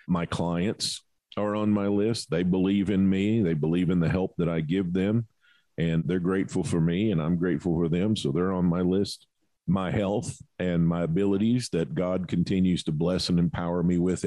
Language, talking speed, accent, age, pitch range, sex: English, 200 wpm, American, 50-69, 90-115 Hz, male